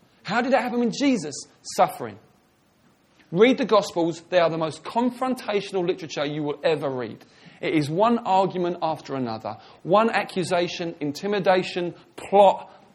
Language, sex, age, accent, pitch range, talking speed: English, male, 40-59, British, 140-205 Hz, 140 wpm